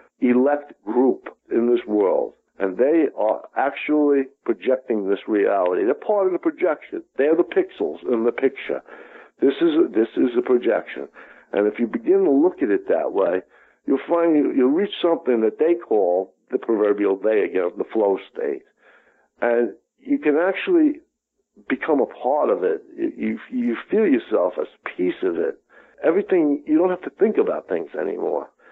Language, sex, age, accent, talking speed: English, male, 60-79, American, 175 wpm